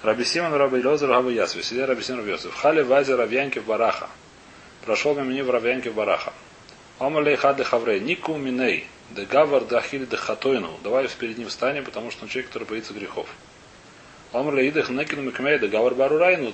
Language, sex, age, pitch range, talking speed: Russian, male, 30-49, 110-140 Hz, 180 wpm